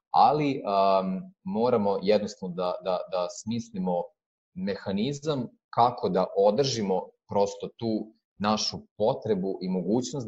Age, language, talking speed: 30-49, Croatian, 95 wpm